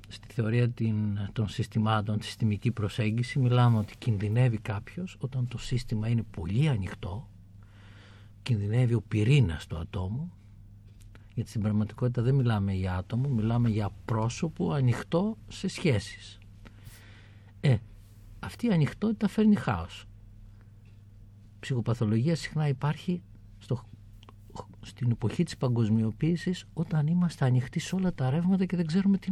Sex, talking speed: male, 125 wpm